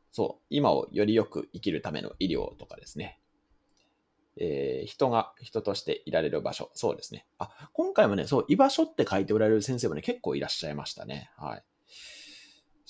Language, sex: Japanese, male